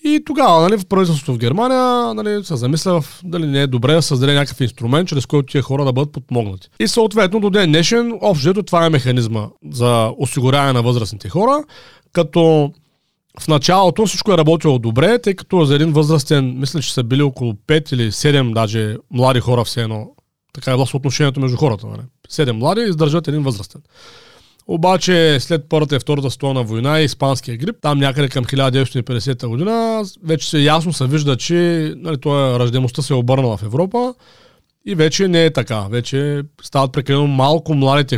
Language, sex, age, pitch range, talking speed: Bulgarian, male, 40-59, 130-170 Hz, 180 wpm